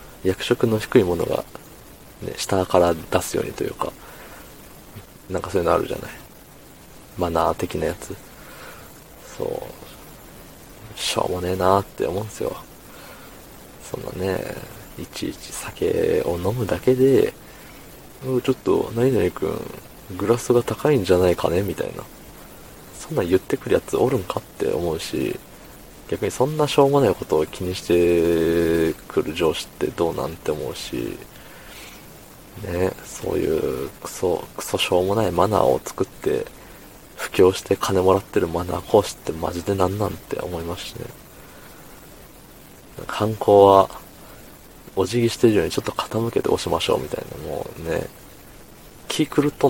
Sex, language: male, Japanese